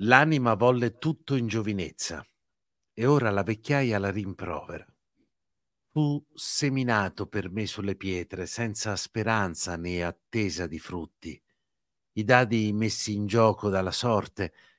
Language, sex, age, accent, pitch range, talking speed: Italian, male, 60-79, native, 95-115 Hz, 120 wpm